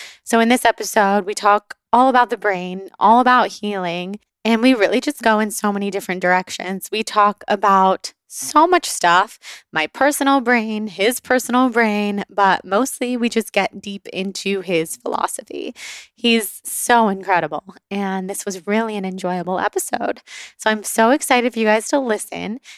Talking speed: 165 wpm